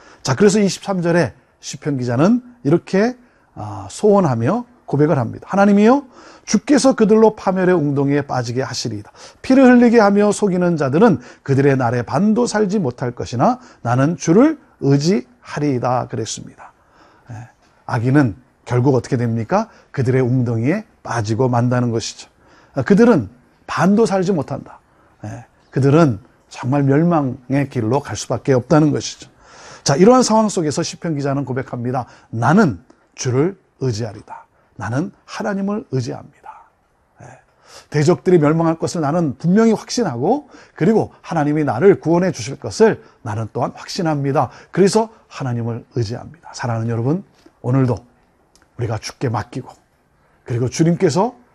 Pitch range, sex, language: 130-205 Hz, male, Korean